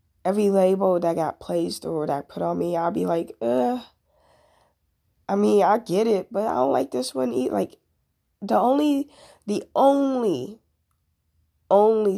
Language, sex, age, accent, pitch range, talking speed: English, female, 20-39, American, 130-185 Hz, 160 wpm